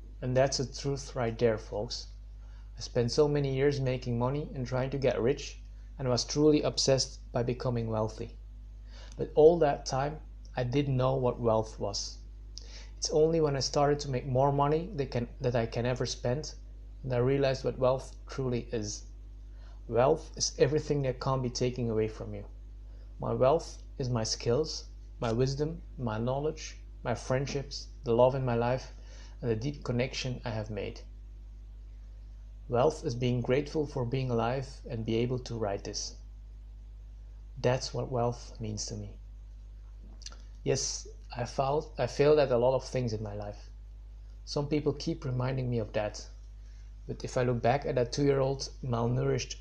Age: 30-49